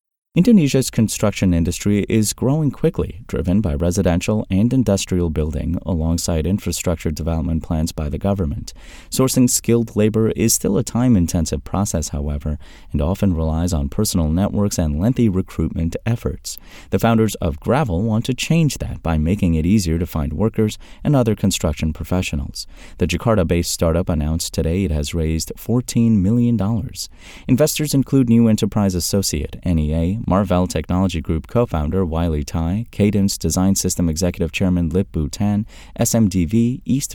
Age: 30-49